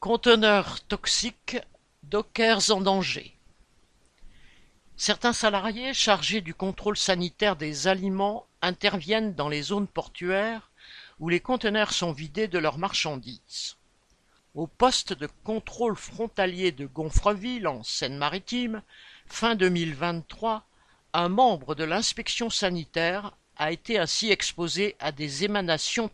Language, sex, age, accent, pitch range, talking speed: French, male, 50-69, French, 165-220 Hz, 110 wpm